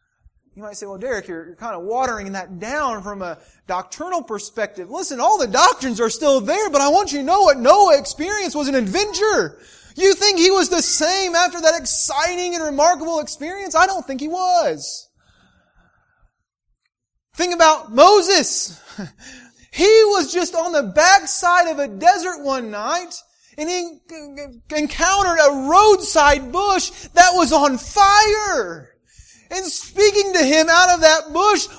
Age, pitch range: 30-49, 290-370 Hz